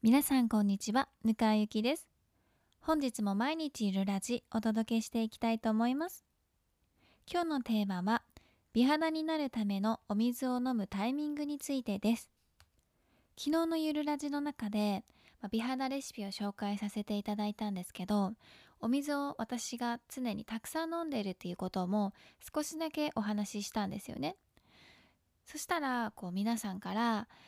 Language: Japanese